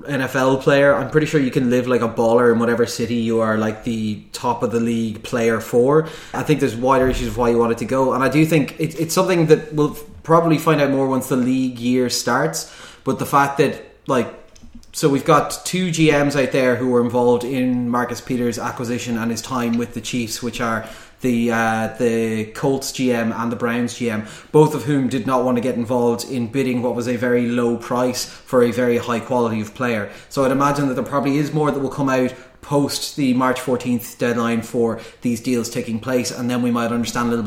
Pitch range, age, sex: 120-135 Hz, 20-39, male